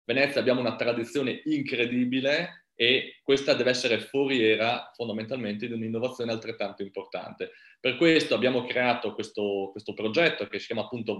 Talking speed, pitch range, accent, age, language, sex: 140 wpm, 110-130 Hz, native, 30-49, Italian, male